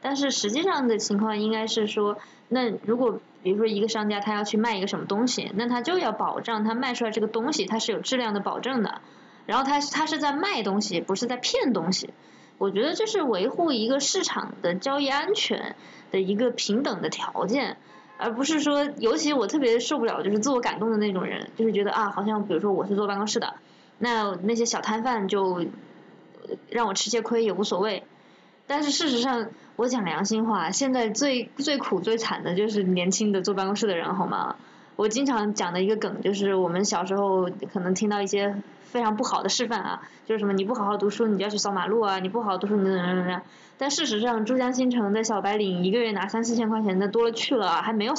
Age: 20-39